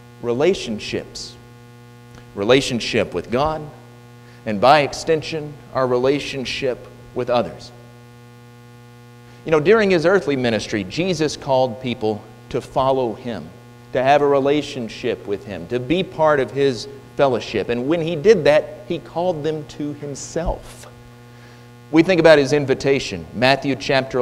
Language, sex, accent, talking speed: English, male, American, 130 wpm